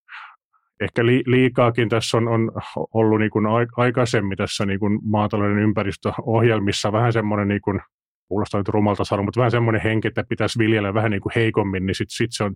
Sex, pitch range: male, 100-115 Hz